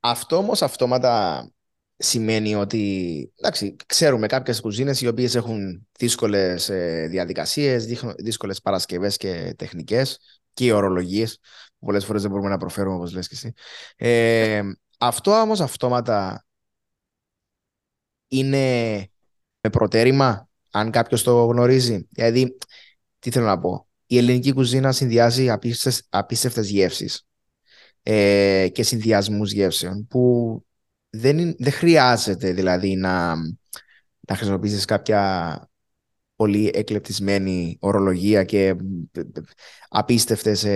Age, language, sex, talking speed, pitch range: 20-39, Greek, male, 100 wpm, 100-125 Hz